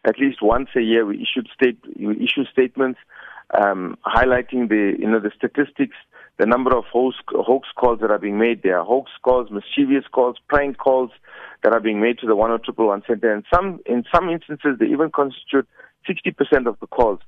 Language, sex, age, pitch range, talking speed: English, male, 50-69, 115-135 Hz, 195 wpm